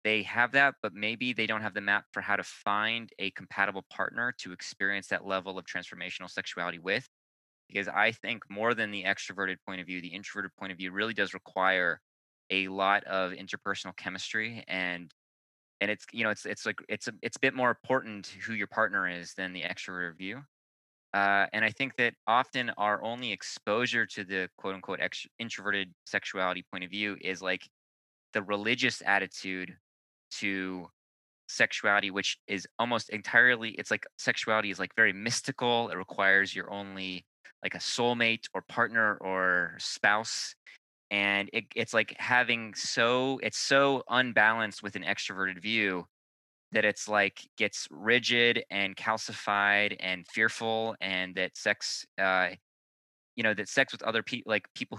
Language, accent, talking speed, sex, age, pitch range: English, American, 165 wpm, male, 20-39, 95-110 Hz